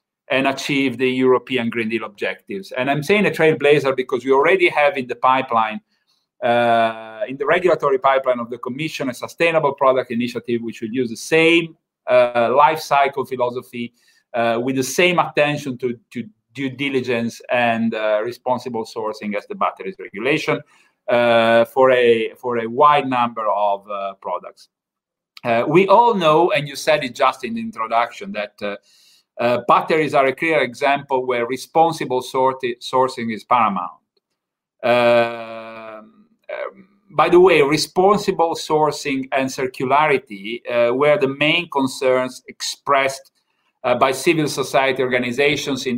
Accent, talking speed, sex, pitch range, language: Italian, 145 wpm, male, 120-150 Hz, English